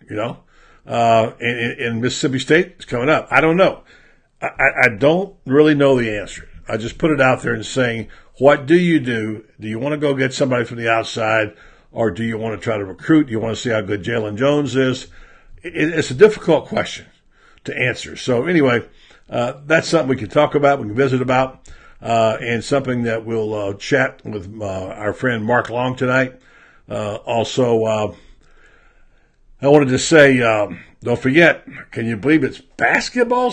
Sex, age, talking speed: male, 60-79, 195 wpm